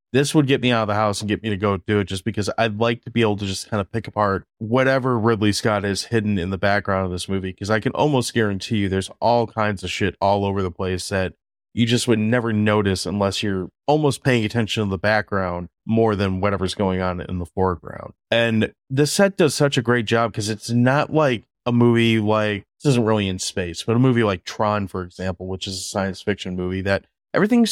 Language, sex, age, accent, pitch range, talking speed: English, male, 20-39, American, 95-120 Hz, 240 wpm